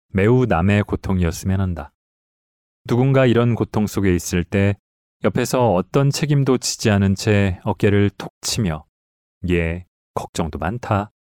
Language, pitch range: Korean, 90-120 Hz